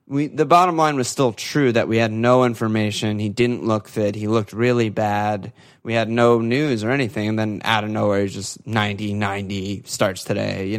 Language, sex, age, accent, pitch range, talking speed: English, male, 20-39, American, 105-120 Hz, 210 wpm